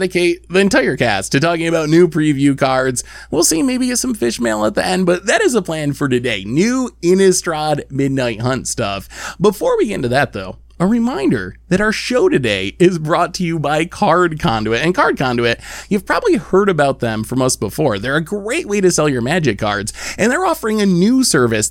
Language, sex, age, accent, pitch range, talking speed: English, male, 20-39, American, 130-200 Hz, 210 wpm